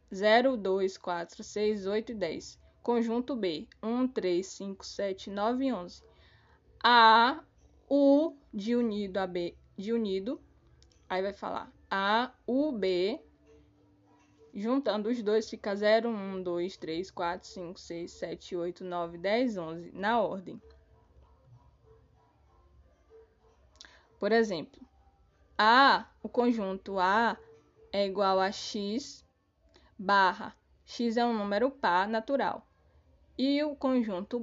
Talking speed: 120 wpm